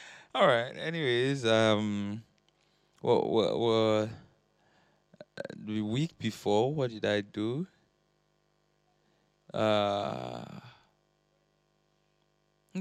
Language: English